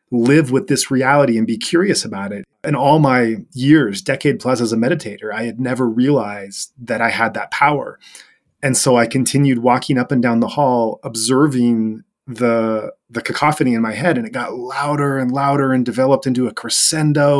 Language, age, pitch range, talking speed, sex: English, 30-49, 120-150 Hz, 190 wpm, male